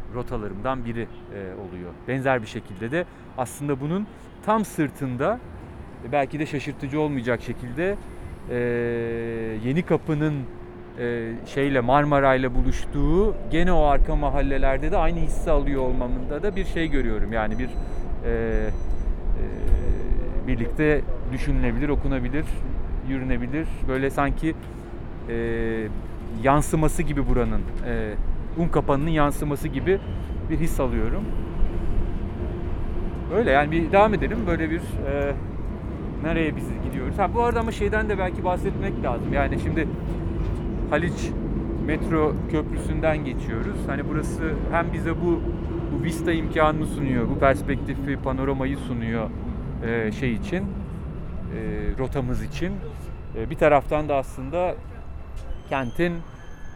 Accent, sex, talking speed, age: native, male, 115 wpm, 40-59